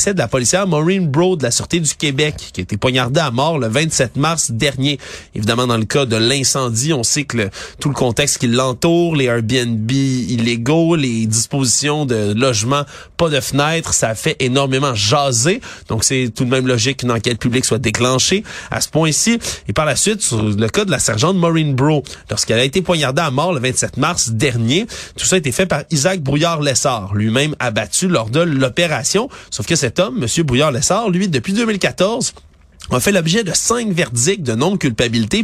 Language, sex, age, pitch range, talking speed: French, male, 30-49, 120-165 Hz, 195 wpm